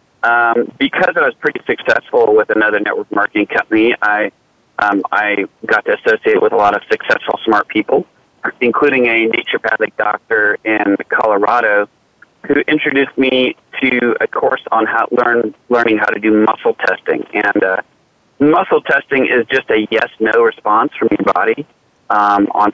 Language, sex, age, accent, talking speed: English, male, 40-59, American, 155 wpm